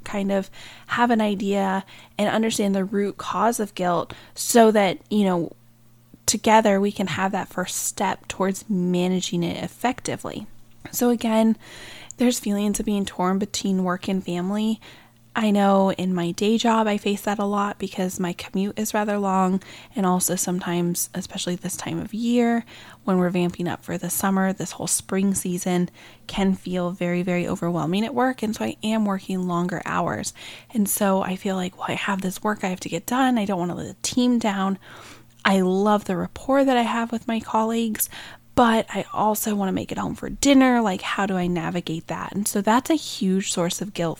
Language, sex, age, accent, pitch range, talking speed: English, female, 10-29, American, 180-215 Hz, 195 wpm